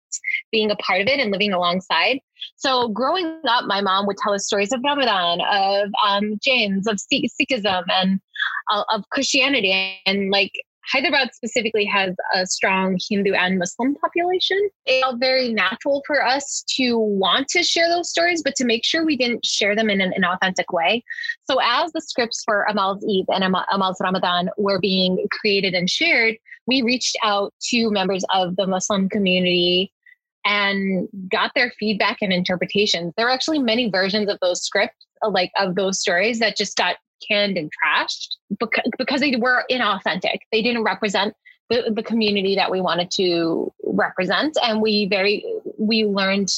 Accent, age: American, 20-39